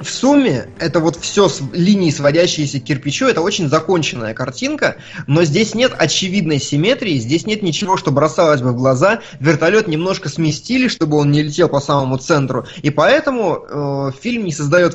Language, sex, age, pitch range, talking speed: Russian, male, 20-39, 130-165 Hz, 175 wpm